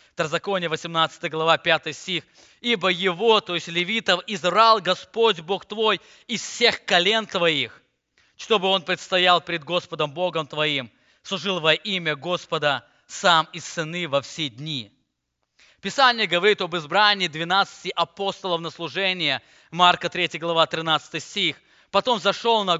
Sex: male